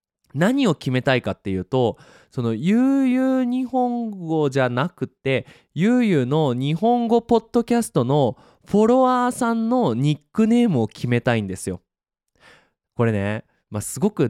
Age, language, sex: 20-39, Japanese, male